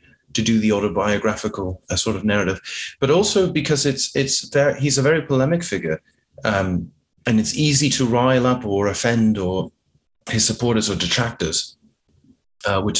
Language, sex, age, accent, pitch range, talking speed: English, male, 30-49, British, 100-125 Hz, 160 wpm